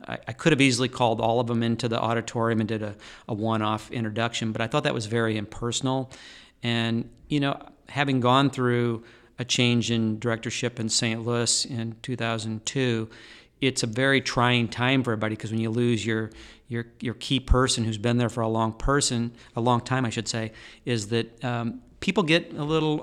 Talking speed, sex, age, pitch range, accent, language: 200 wpm, male, 50-69, 115-125 Hz, American, English